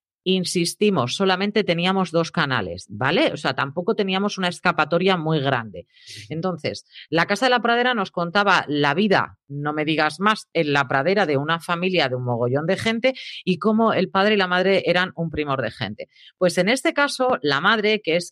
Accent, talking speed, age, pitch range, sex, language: Spanish, 195 wpm, 40-59, 140-190 Hz, female, Spanish